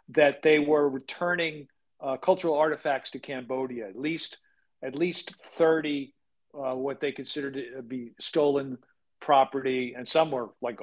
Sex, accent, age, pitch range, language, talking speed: male, American, 50-69, 135-165 Hz, English, 145 wpm